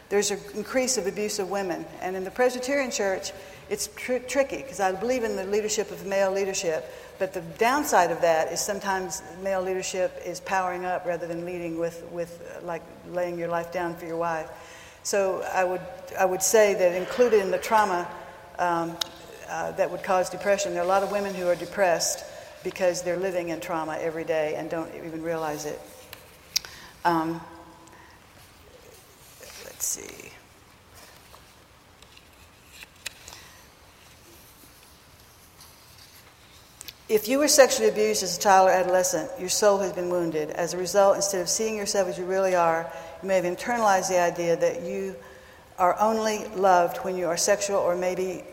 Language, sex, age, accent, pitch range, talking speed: English, female, 60-79, American, 170-195 Hz, 165 wpm